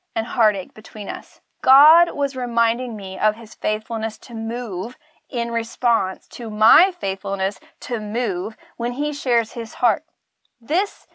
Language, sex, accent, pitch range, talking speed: English, female, American, 225-310 Hz, 140 wpm